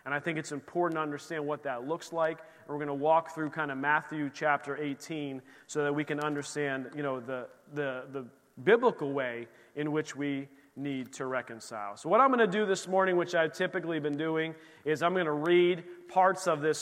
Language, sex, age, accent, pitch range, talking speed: English, male, 40-59, American, 145-190 Hz, 215 wpm